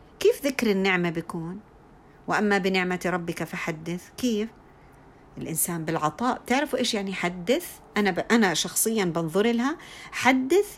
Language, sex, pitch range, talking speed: Arabic, female, 160-230 Hz, 110 wpm